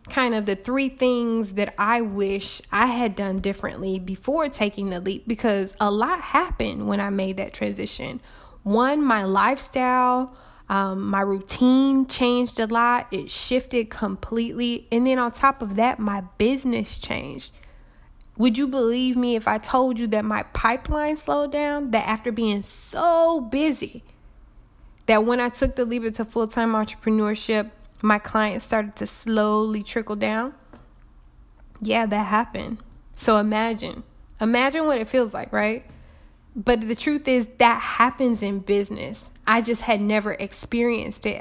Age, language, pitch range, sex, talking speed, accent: 10-29, English, 210-250 Hz, female, 150 wpm, American